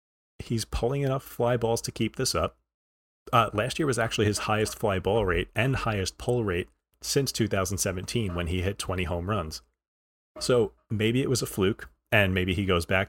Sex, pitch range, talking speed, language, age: male, 90-110 Hz, 195 wpm, English, 30-49